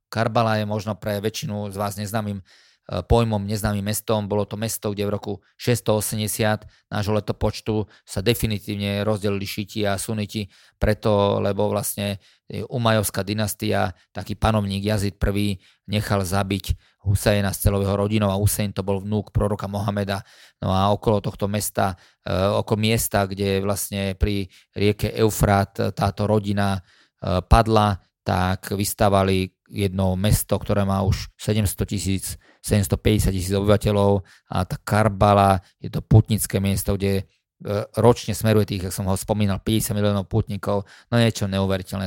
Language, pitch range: Slovak, 100-110 Hz